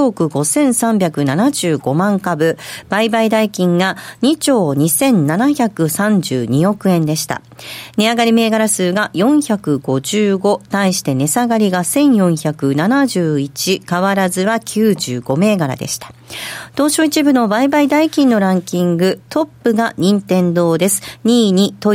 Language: Japanese